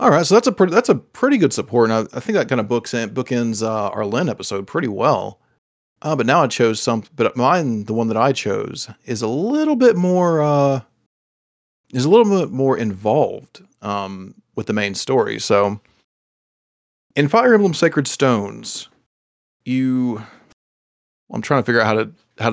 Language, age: English, 30-49